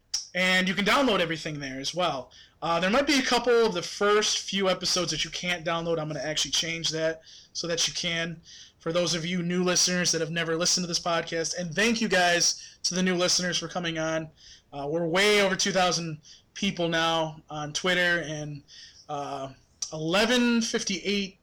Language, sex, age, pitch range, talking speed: English, male, 20-39, 160-195 Hz, 195 wpm